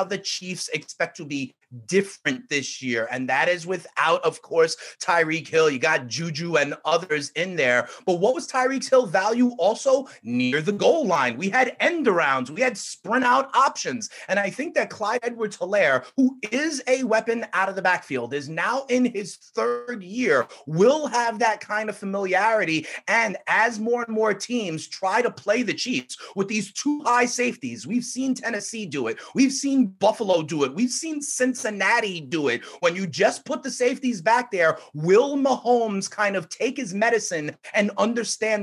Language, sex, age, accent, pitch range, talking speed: English, male, 30-49, American, 165-240 Hz, 185 wpm